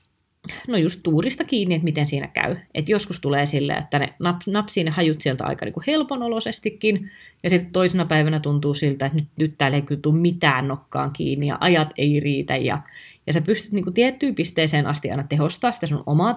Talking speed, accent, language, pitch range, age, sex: 195 wpm, native, Finnish, 155-215 Hz, 30-49, female